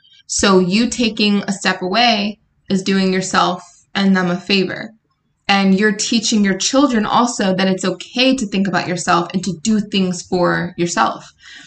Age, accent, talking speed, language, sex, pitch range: 20-39, American, 165 wpm, English, female, 180-205 Hz